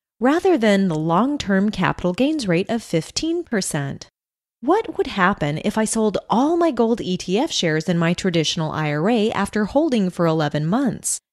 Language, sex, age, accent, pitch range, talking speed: English, female, 30-49, American, 165-250 Hz, 155 wpm